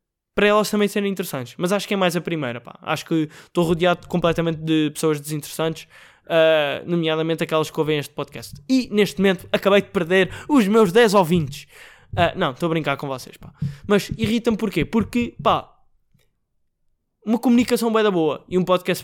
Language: Portuguese